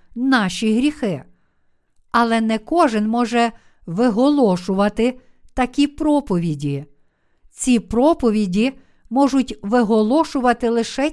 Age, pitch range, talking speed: 50-69, 205-260 Hz, 75 wpm